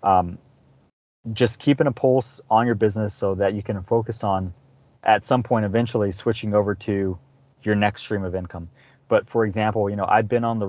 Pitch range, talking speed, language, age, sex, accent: 100-120 Hz, 195 wpm, English, 30-49, male, American